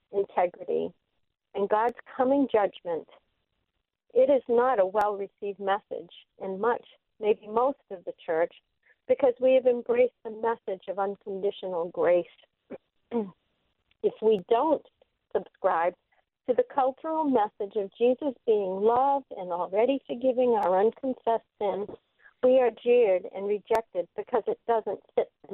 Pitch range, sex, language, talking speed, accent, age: 200-315 Hz, female, English, 130 wpm, American, 50-69